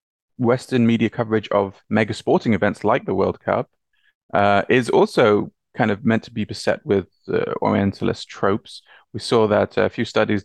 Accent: British